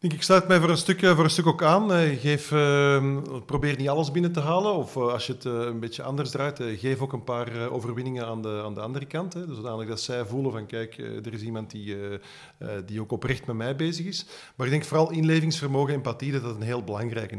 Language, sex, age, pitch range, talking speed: Dutch, male, 40-59, 120-160 Hz, 255 wpm